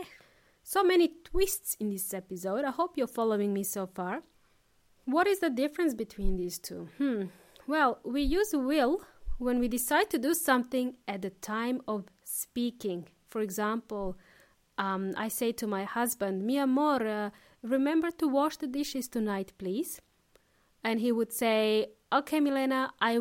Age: 30-49